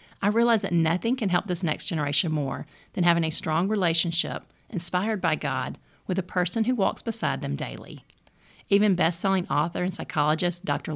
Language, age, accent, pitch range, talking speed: English, 40-59, American, 150-195 Hz, 175 wpm